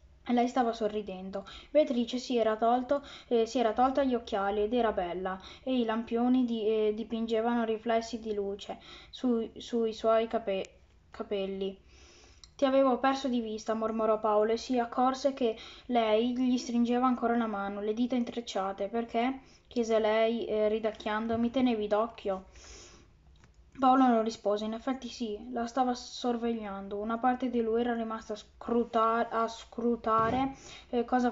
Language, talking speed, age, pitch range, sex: Italian, 150 wpm, 10-29, 220-250 Hz, female